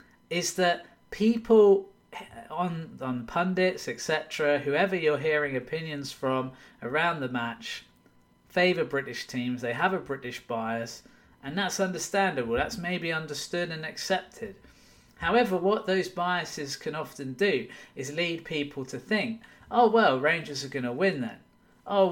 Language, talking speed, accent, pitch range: English, 140 wpm, British, 130-180 Hz